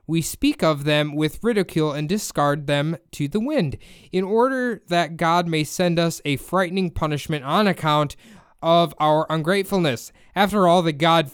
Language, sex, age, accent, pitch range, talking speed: English, male, 20-39, American, 140-180 Hz, 165 wpm